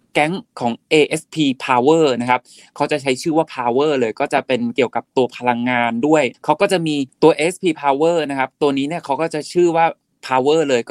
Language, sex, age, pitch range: Thai, male, 20-39, 125-160 Hz